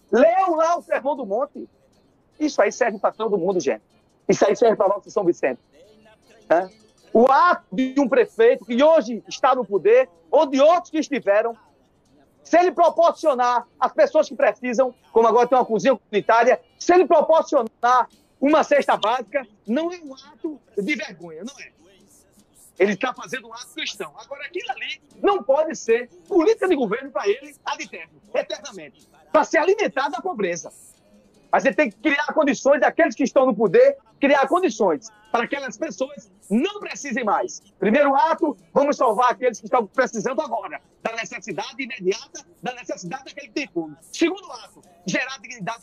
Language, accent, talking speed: Portuguese, Brazilian, 170 wpm